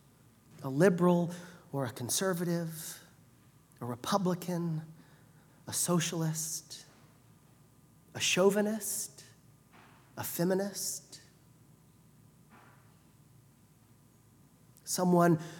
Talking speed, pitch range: 55 wpm, 150-190 Hz